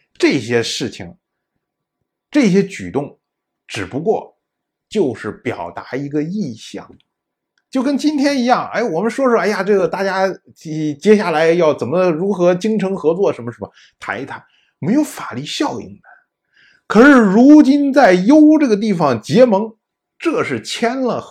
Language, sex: Chinese, male